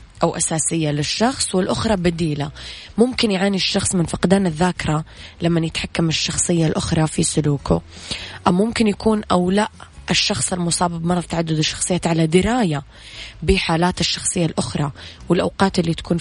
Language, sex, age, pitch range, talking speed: Arabic, female, 20-39, 155-185 Hz, 130 wpm